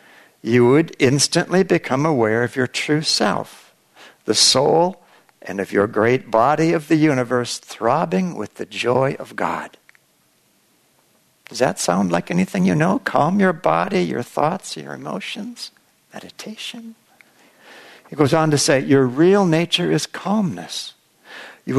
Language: English